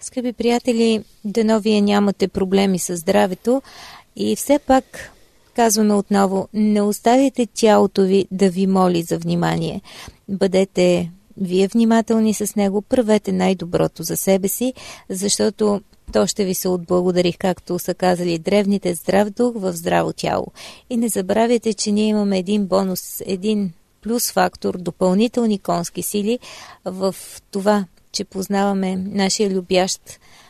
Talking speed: 130 wpm